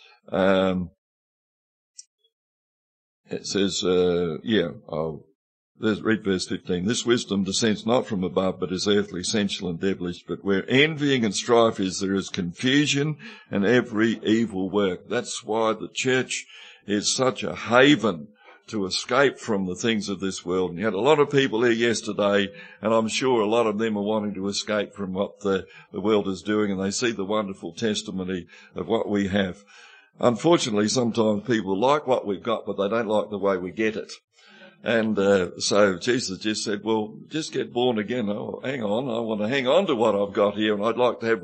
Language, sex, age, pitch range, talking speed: English, male, 60-79, 95-115 Hz, 190 wpm